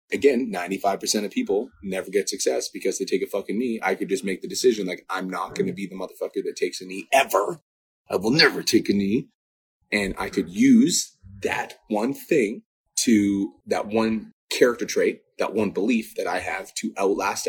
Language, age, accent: English, 30-49, American